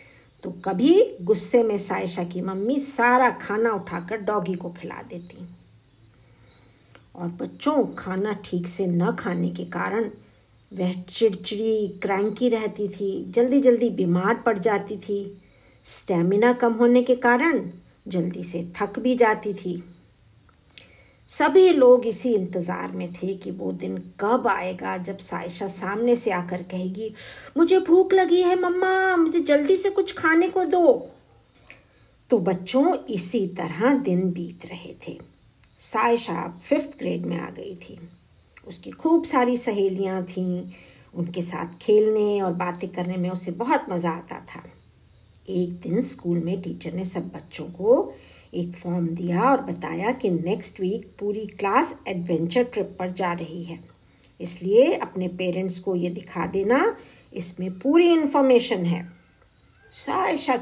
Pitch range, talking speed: 175-240 Hz, 140 wpm